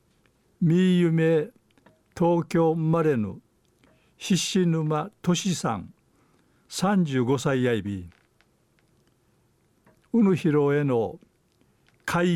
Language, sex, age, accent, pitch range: Japanese, male, 60-79, native, 125-170 Hz